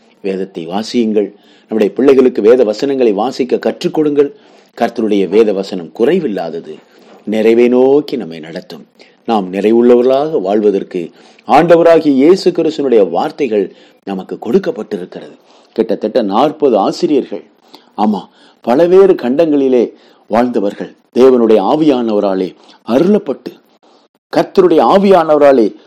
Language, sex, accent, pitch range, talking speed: Tamil, male, native, 105-170 Hz, 85 wpm